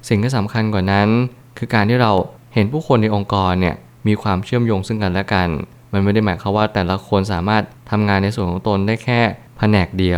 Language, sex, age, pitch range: Thai, male, 20-39, 95-115 Hz